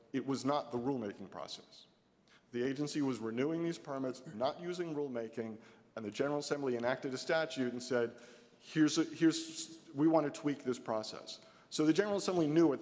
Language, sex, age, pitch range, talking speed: English, male, 40-59, 120-155 Hz, 185 wpm